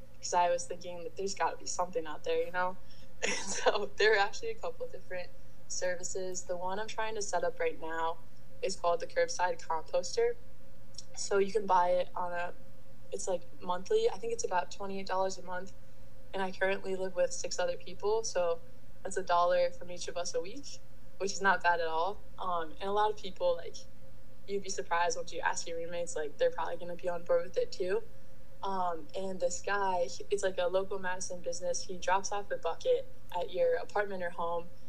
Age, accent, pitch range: 10-29, American, 175-230 Hz